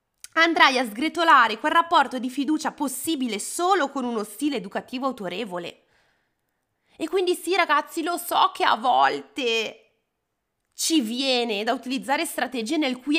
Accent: native